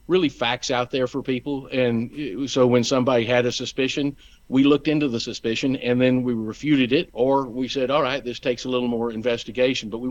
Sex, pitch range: male, 120-135 Hz